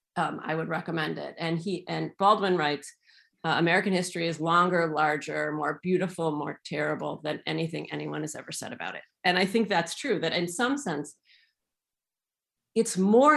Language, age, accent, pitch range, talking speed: English, 40-59, American, 155-185 Hz, 175 wpm